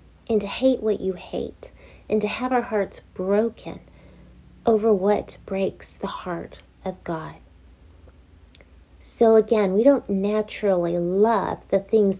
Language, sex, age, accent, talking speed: English, female, 40-59, American, 135 wpm